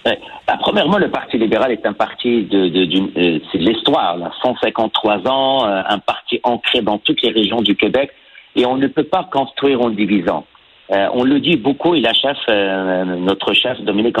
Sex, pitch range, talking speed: male, 110-160 Hz, 200 wpm